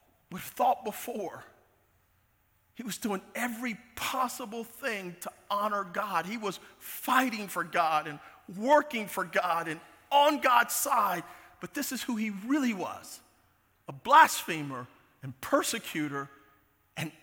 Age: 40-59